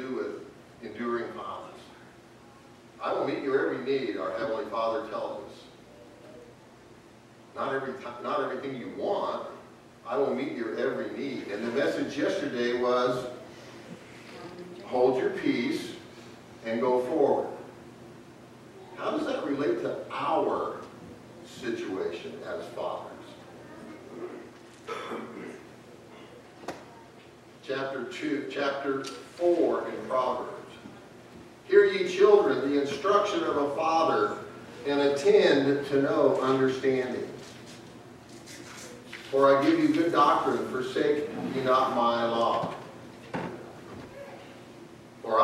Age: 50-69